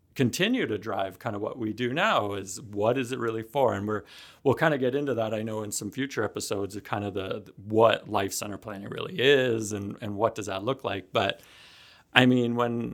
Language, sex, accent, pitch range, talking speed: English, male, American, 100-115 Hz, 230 wpm